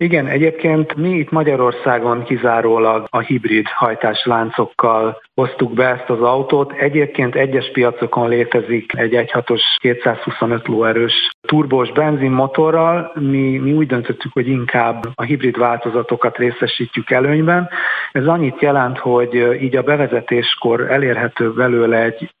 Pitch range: 120-145 Hz